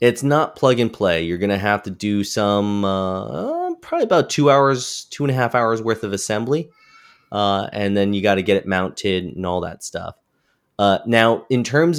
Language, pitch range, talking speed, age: English, 90-115 Hz, 210 wpm, 20-39